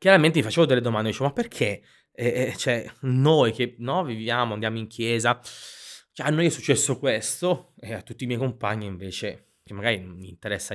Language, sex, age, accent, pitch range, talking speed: Italian, male, 20-39, native, 95-120 Hz, 195 wpm